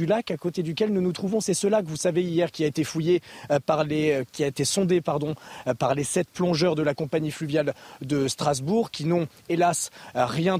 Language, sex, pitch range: French, male, 160-205 Hz